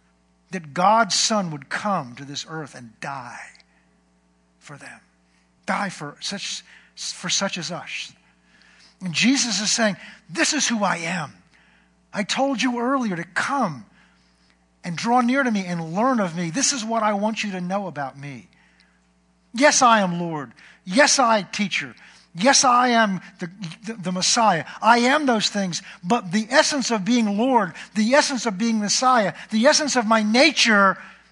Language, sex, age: English, male, 50-69